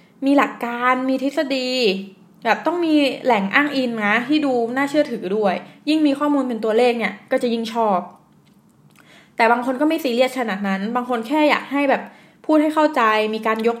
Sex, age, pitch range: female, 20-39, 210-270 Hz